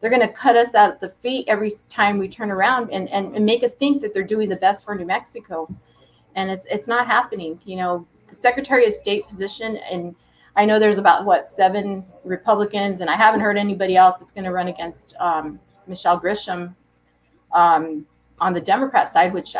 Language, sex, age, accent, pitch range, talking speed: English, female, 30-49, American, 185-220 Hz, 210 wpm